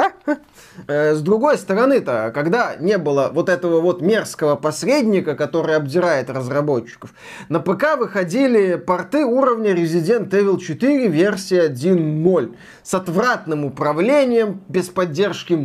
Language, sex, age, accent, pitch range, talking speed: Russian, male, 20-39, native, 155-220 Hz, 110 wpm